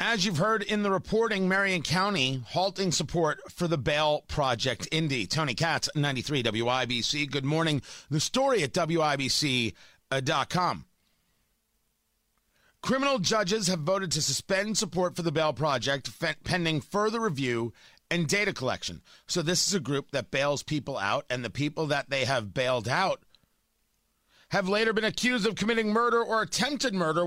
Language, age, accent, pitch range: English, 40-59, American, 145-205 Hz